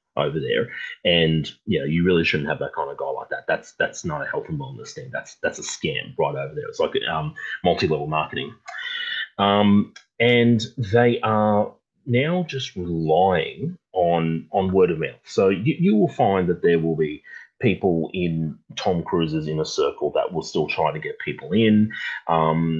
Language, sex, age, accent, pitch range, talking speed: English, male, 30-49, Australian, 80-125 Hz, 190 wpm